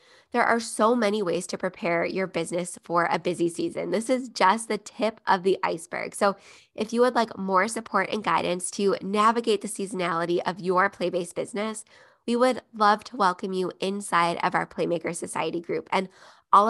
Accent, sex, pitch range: American, female, 180-220 Hz